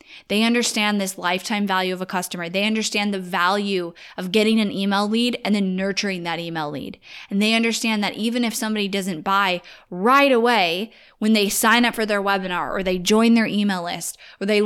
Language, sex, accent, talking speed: English, female, American, 200 wpm